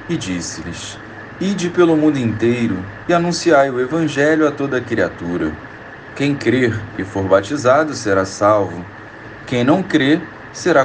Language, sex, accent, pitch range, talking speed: Portuguese, male, Brazilian, 105-140 Hz, 140 wpm